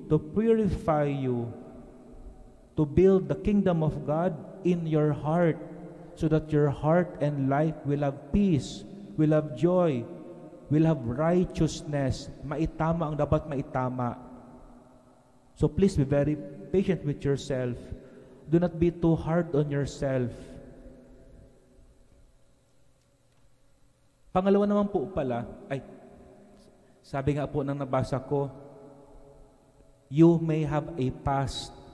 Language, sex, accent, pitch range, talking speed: English, male, Filipino, 135-160 Hz, 115 wpm